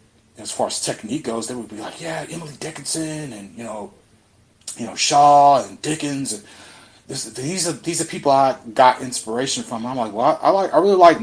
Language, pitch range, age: English, 110-130 Hz, 30-49